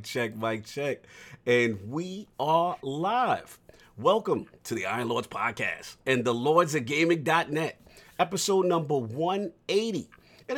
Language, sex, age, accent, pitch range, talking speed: English, male, 40-59, American, 130-205 Hz, 125 wpm